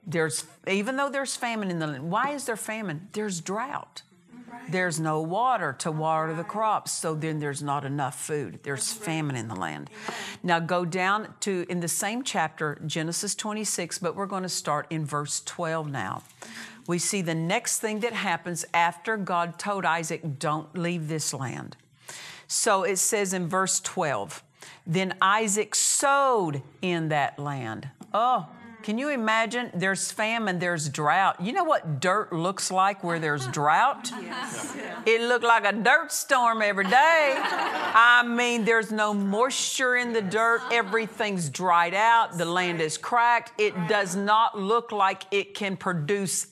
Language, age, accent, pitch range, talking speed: English, 50-69, American, 160-220 Hz, 165 wpm